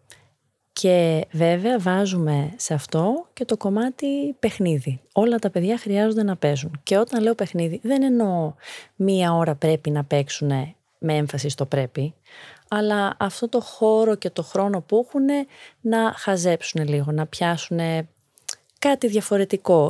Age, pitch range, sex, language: 30-49, 160-220 Hz, female, Greek